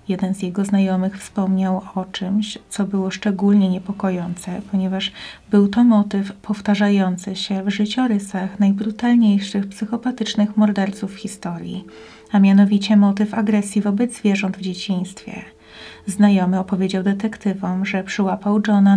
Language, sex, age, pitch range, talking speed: Polish, female, 30-49, 190-210 Hz, 120 wpm